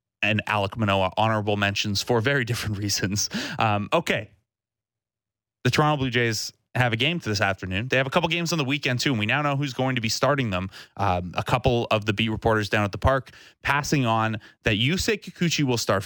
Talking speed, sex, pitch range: 220 wpm, male, 105-130 Hz